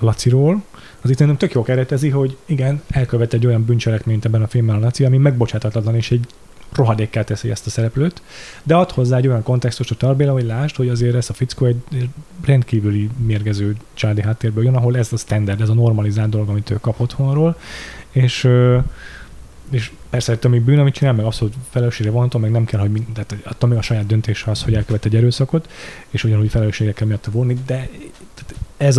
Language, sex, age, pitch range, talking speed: Hungarian, male, 30-49, 110-130 Hz, 190 wpm